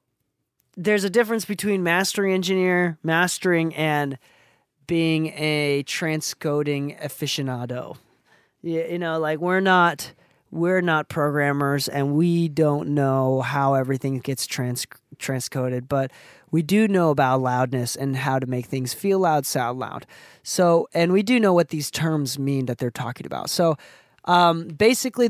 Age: 20-39